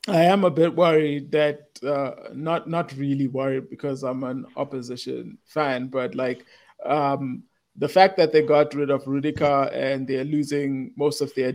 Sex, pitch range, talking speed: male, 135-160 Hz, 170 wpm